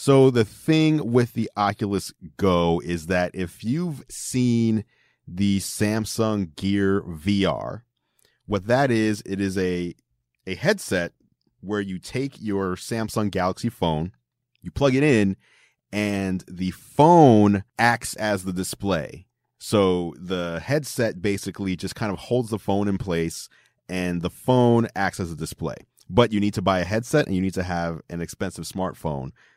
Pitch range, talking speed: 85-110 Hz, 155 wpm